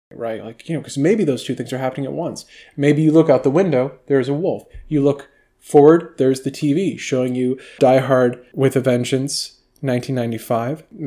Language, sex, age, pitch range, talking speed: English, male, 20-39, 120-155 Hz, 195 wpm